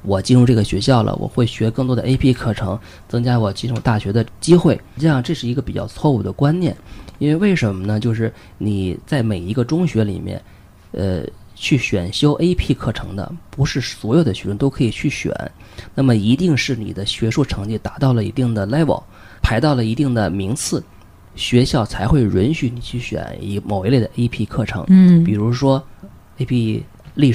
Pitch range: 105-135 Hz